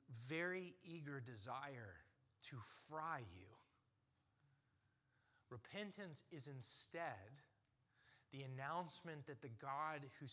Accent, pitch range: American, 120-180 Hz